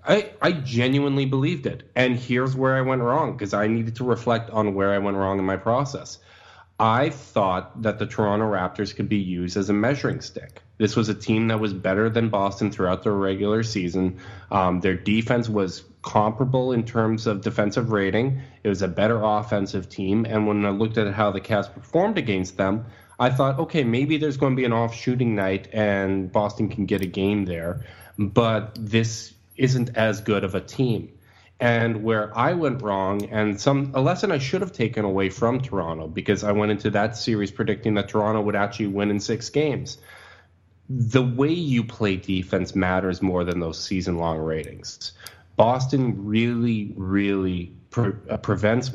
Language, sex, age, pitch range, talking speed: English, male, 20-39, 100-120 Hz, 185 wpm